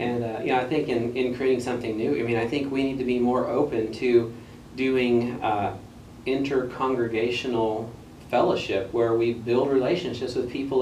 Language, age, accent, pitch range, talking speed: English, 40-59, American, 110-125 Hz, 175 wpm